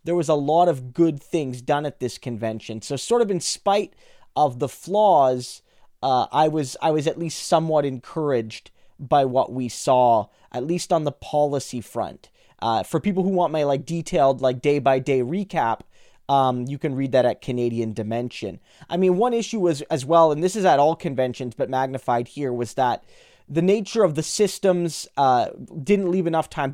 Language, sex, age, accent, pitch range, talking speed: English, male, 20-39, American, 135-170 Hz, 190 wpm